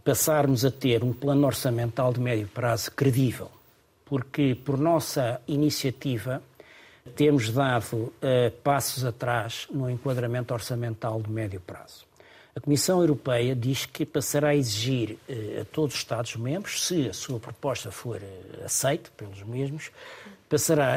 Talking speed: 130 wpm